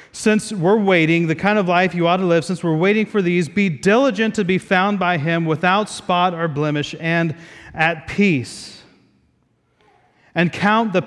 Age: 30-49